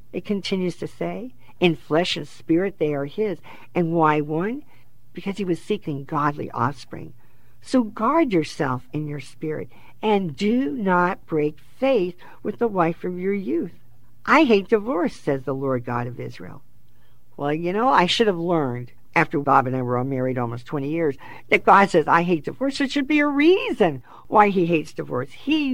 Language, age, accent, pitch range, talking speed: English, 50-69, American, 130-175 Hz, 185 wpm